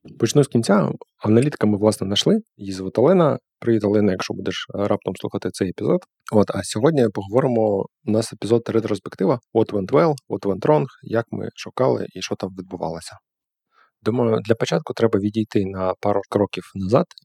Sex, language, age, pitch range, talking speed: male, Ukrainian, 20-39, 100-115 Hz, 165 wpm